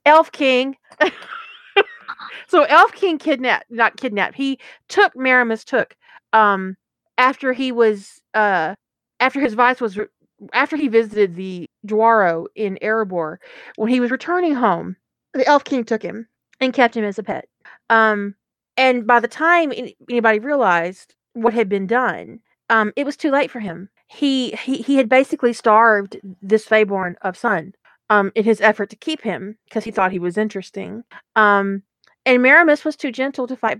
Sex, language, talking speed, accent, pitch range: female, English, 165 wpm, American, 210-270 Hz